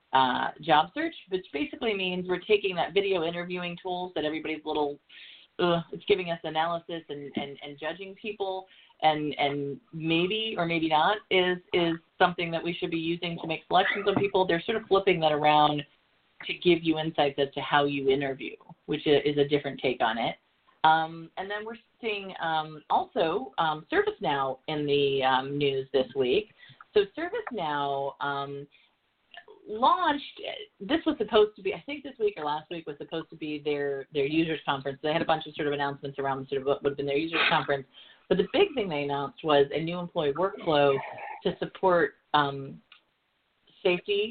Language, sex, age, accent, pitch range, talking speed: English, female, 30-49, American, 145-195 Hz, 190 wpm